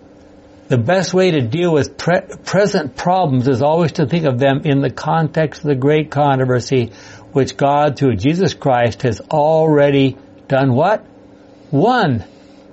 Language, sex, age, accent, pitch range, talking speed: English, male, 60-79, American, 130-170 Hz, 150 wpm